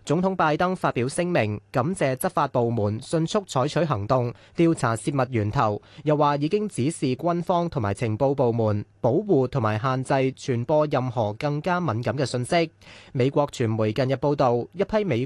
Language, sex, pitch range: Chinese, male, 120-160 Hz